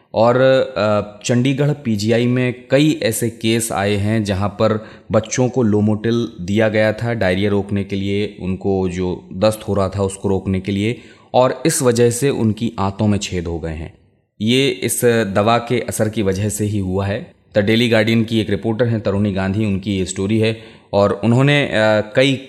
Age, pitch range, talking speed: 20-39, 100-120 Hz, 185 wpm